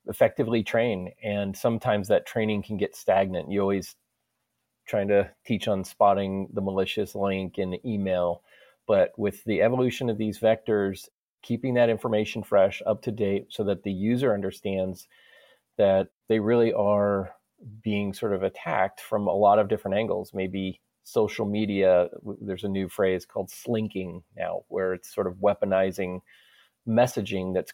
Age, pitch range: 30-49, 95-110 Hz